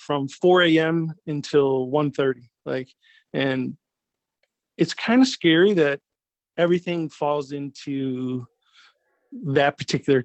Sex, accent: male, American